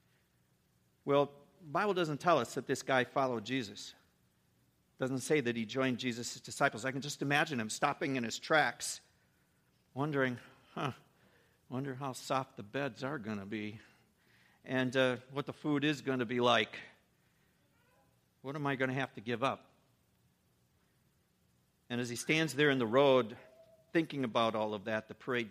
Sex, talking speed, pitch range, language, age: male, 170 wpm, 120-165 Hz, English, 50-69